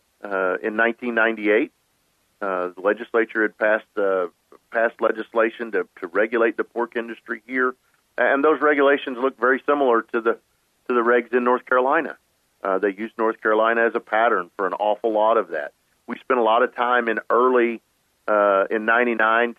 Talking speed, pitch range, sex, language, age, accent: 175 wpm, 110-130 Hz, male, English, 50-69, American